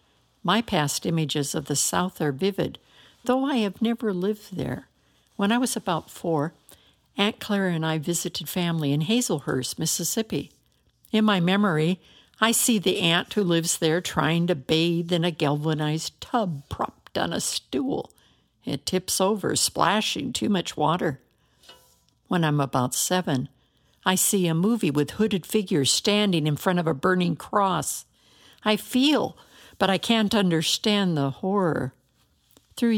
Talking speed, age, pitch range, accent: 150 wpm, 60-79, 160-215 Hz, American